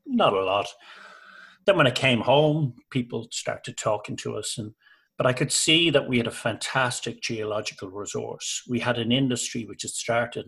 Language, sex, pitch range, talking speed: English, male, 115-140 Hz, 185 wpm